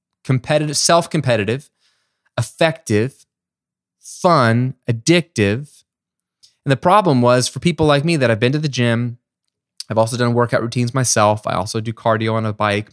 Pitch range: 105-145 Hz